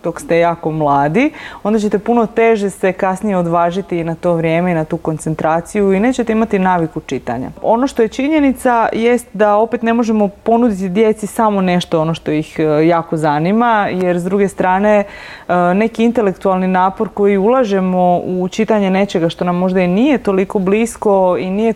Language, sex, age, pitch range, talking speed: Croatian, female, 30-49, 180-225 Hz, 175 wpm